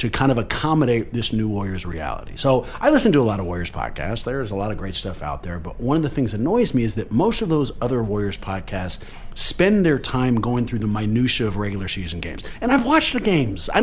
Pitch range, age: 110-155 Hz, 40-59